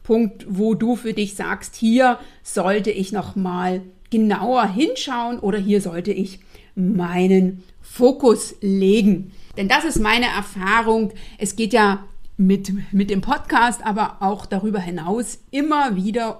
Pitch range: 205-265 Hz